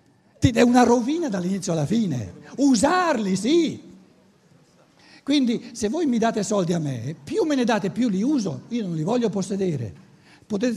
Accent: native